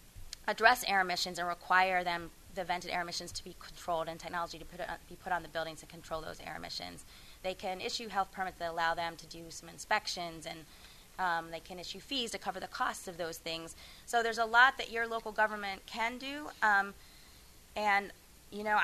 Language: English